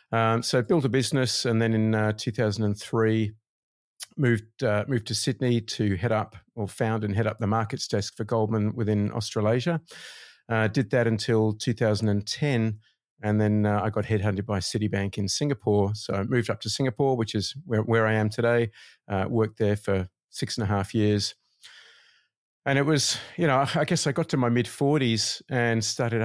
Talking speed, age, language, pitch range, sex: 185 wpm, 50-69, English, 105-120 Hz, male